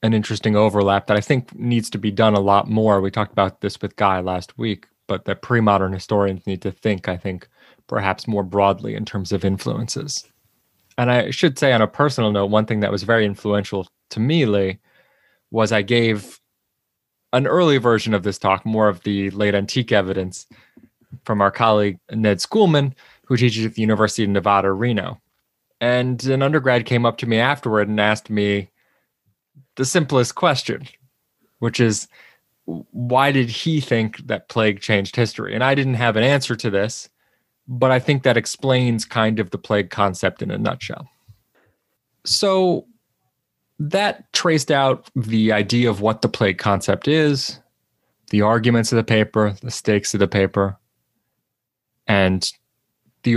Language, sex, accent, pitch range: English, male, American, 100-130 Hz